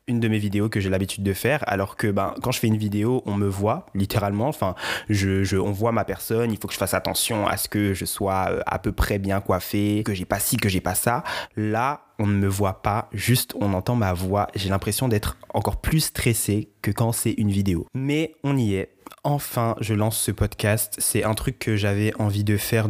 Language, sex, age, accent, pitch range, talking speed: French, male, 20-39, French, 100-120 Hz, 240 wpm